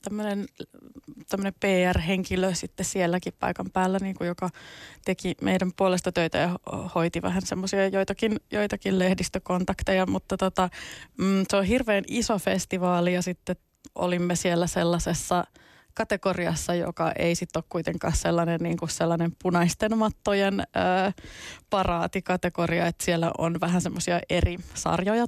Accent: native